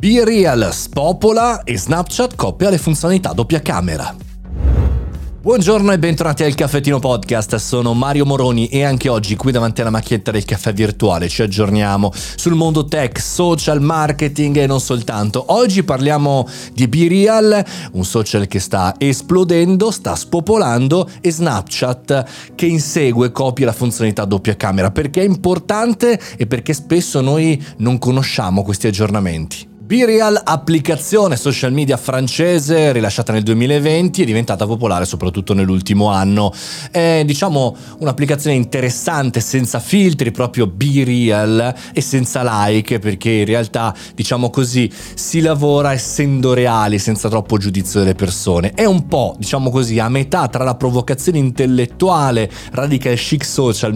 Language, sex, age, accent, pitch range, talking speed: Italian, male, 30-49, native, 110-155 Hz, 140 wpm